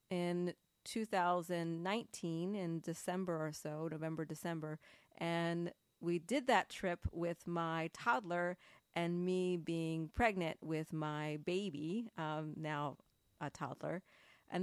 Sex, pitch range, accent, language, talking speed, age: female, 160-195 Hz, American, English, 115 wpm, 30-49